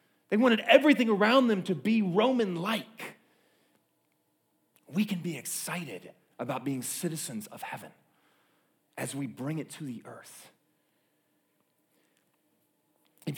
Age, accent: 30-49, American